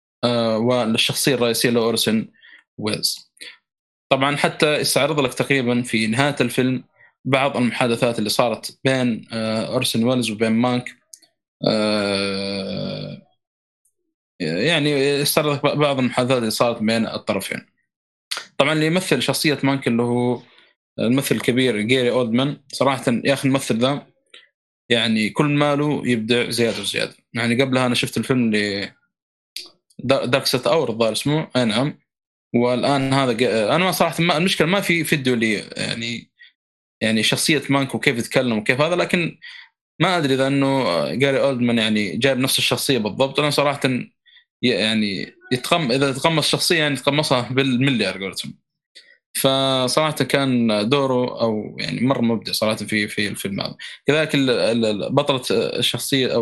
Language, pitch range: Arabic, 115-140 Hz